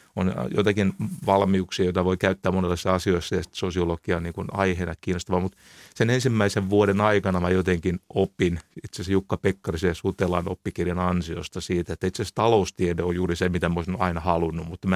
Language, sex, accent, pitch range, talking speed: Finnish, male, native, 90-100 Hz, 175 wpm